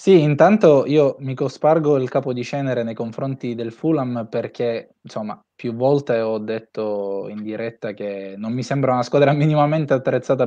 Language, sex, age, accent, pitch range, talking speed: Italian, male, 20-39, native, 115-145 Hz, 165 wpm